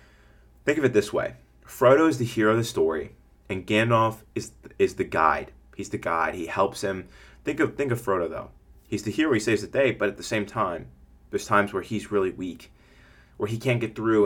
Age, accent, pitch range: 30-49, American, 90-115 Hz